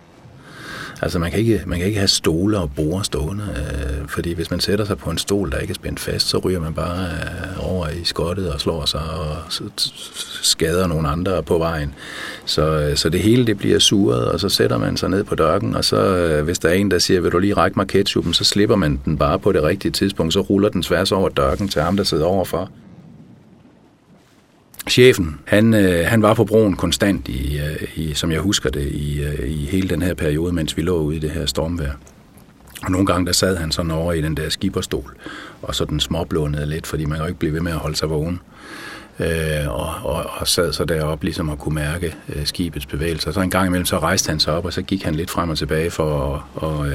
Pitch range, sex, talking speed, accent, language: 75-95 Hz, male, 235 wpm, Danish, English